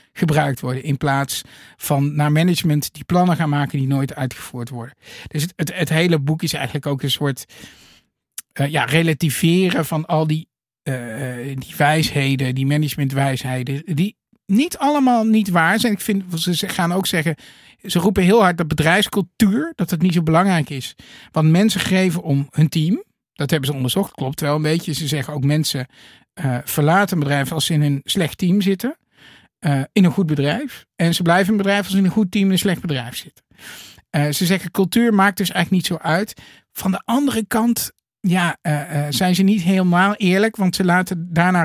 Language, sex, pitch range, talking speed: Dutch, male, 140-185 Hz, 195 wpm